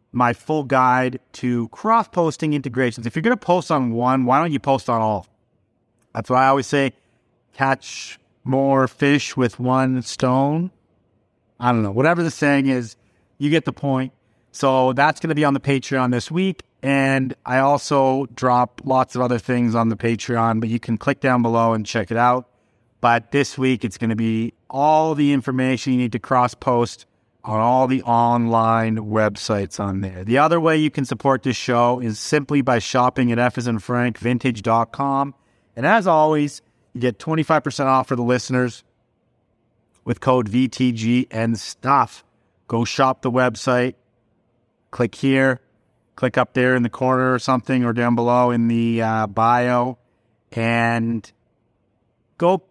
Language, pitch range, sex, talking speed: English, 115-135 Hz, male, 165 wpm